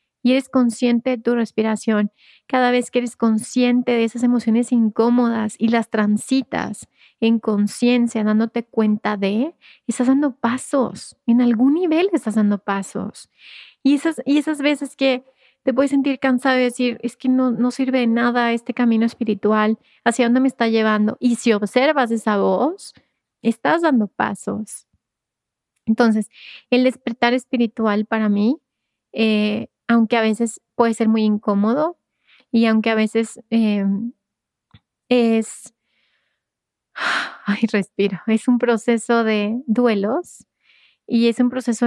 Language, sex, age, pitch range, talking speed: Spanish, female, 30-49, 215-245 Hz, 140 wpm